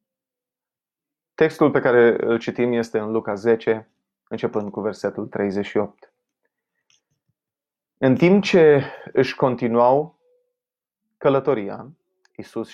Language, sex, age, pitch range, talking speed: Romanian, male, 30-49, 115-185 Hz, 95 wpm